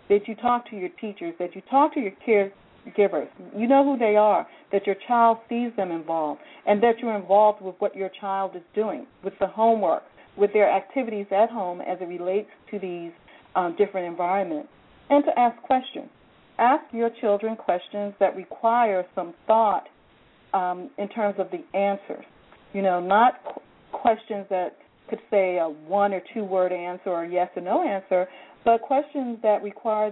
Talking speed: 180 wpm